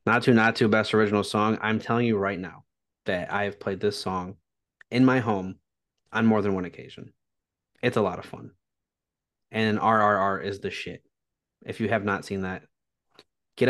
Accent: American